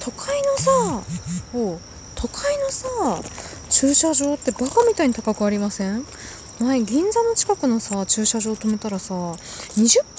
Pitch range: 195-290 Hz